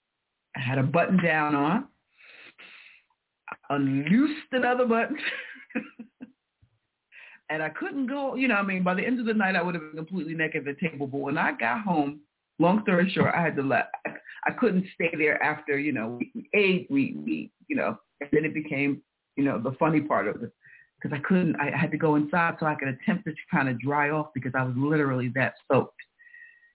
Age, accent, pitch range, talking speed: 50-69, American, 140-225 Hz, 205 wpm